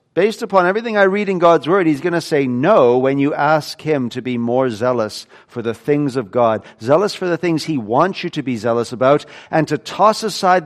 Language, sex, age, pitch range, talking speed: English, male, 50-69, 115-165 Hz, 230 wpm